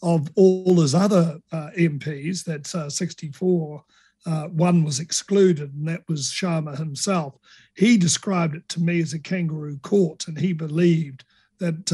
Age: 50-69